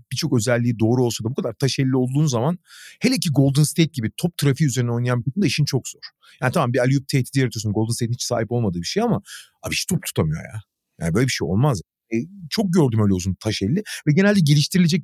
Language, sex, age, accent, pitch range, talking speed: Turkish, male, 40-59, native, 120-175 Hz, 230 wpm